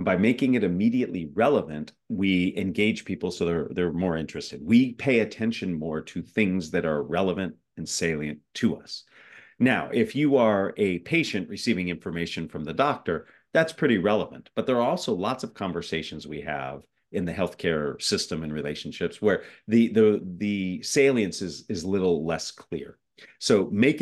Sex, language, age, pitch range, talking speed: male, English, 40-59, 85-105 Hz, 165 wpm